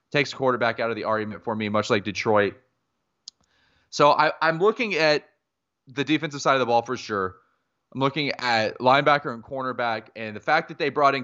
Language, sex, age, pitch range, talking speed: English, male, 20-39, 110-130 Hz, 190 wpm